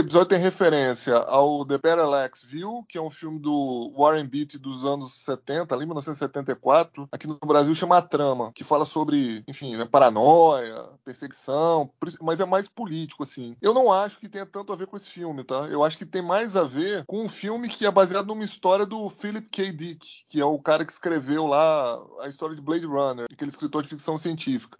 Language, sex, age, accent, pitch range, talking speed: Portuguese, male, 20-39, Brazilian, 150-205 Hz, 210 wpm